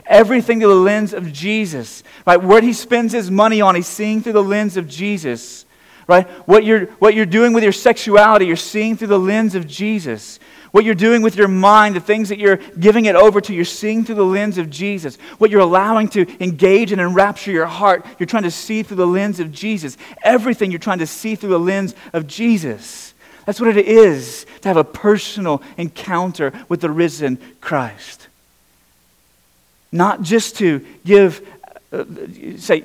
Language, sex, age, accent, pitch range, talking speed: English, male, 30-49, American, 130-210 Hz, 190 wpm